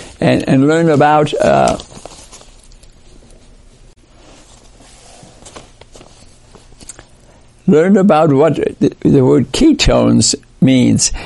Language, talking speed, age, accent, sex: English, 70 wpm, 60-79, American, male